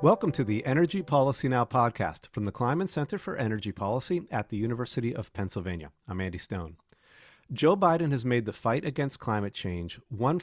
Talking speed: 185 wpm